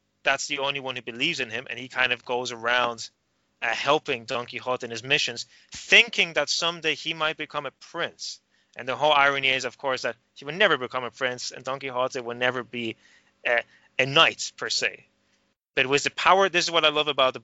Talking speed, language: 225 wpm, English